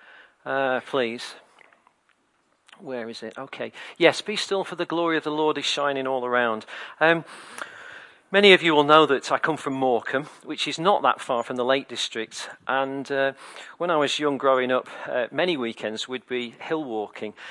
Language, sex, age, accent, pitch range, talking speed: English, male, 40-59, British, 130-170 Hz, 185 wpm